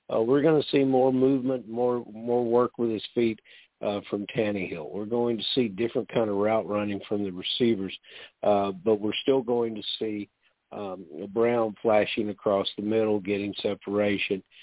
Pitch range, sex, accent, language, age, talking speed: 100-125 Hz, male, American, English, 50-69, 175 wpm